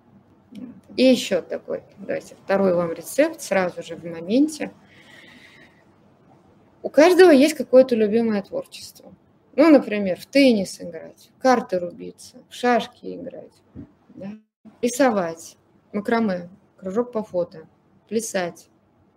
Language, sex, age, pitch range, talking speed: Russian, female, 20-39, 175-250 Hz, 105 wpm